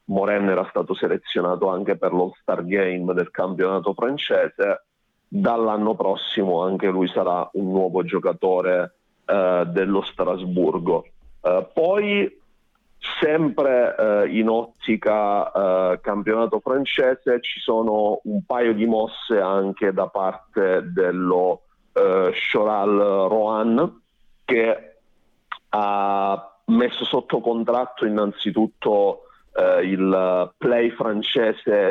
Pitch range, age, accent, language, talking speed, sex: 95-115 Hz, 40-59, native, Italian, 100 wpm, male